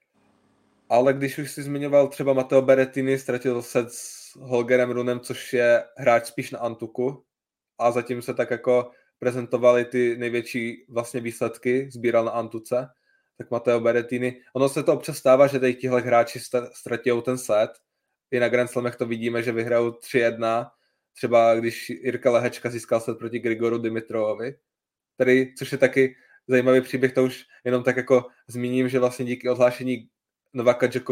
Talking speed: 155 wpm